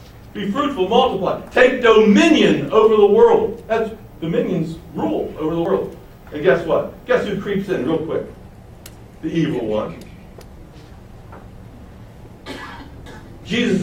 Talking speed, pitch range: 115 wpm, 135-195 Hz